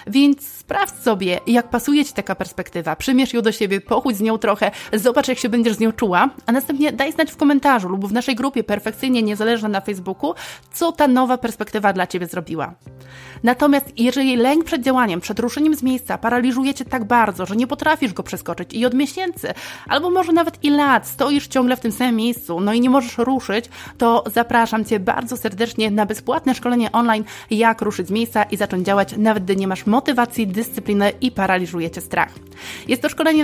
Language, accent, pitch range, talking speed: Polish, native, 210-270 Hz, 195 wpm